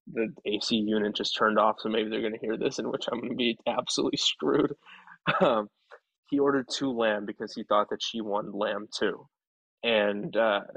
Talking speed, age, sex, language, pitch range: 200 wpm, 20-39, male, English, 110-145 Hz